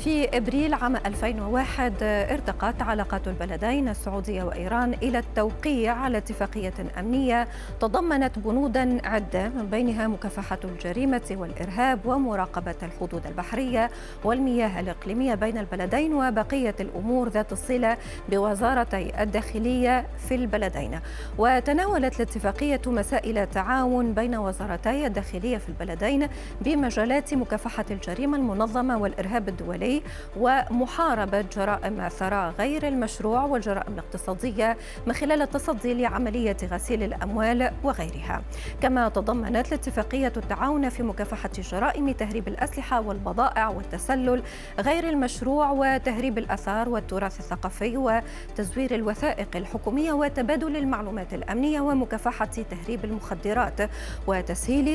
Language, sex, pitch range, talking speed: Arabic, female, 205-255 Hz, 100 wpm